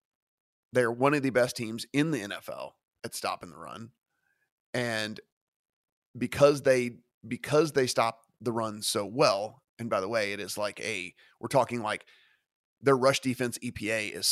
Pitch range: 110-130 Hz